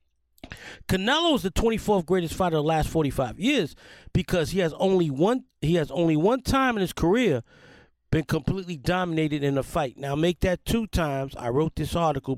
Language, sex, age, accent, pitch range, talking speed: English, male, 40-59, American, 135-210 Hz, 200 wpm